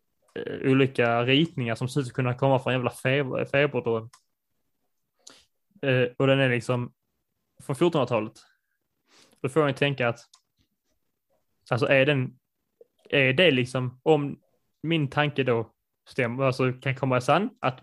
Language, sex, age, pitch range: Swedish, male, 20-39, 125-145 Hz